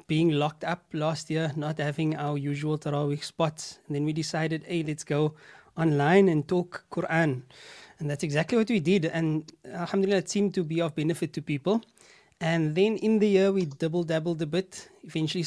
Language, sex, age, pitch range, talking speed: English, male, 20-39, 155-185 Hz, 190 wpm